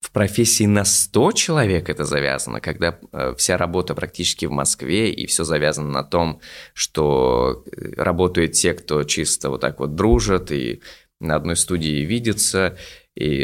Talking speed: 150 wpm